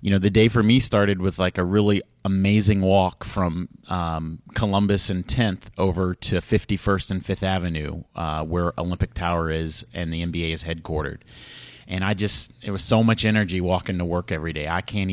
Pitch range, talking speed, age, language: 90-105 Hz, 195 wpm, 30-49, English